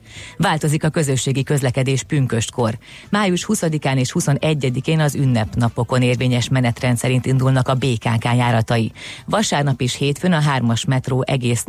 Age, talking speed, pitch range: 30-49, 130 wpm, 120-145 Hz